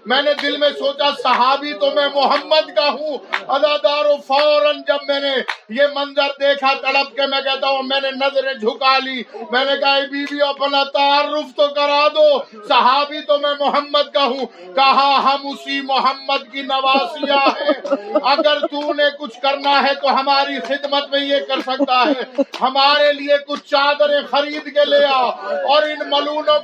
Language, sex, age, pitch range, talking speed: Urdu, male, 50-69, 265-290 Hz, 170 wpm